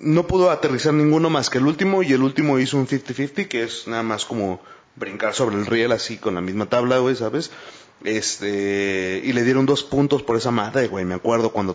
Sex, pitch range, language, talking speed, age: male, 115-150 Hz, Spanish, 225 wpm, 30-49